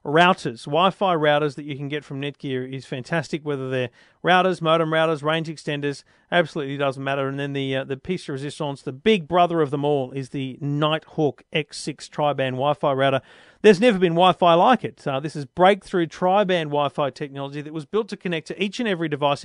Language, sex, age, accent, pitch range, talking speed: English, male, 40-59, Australian, 140-180 Hz, 205 wpm